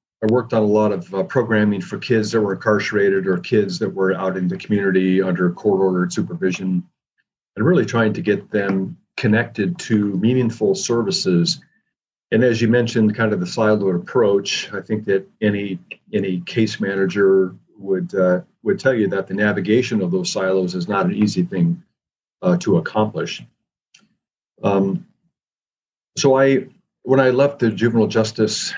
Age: 40-59